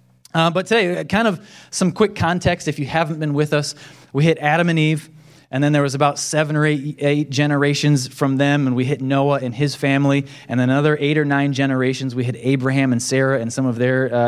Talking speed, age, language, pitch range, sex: 235 wpm, 20-39, English, 130-155 Hz, male